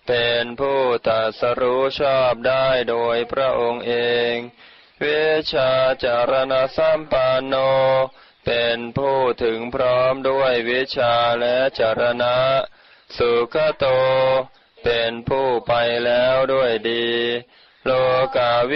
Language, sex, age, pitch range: Thai, male, 20-39, 120-135 Hz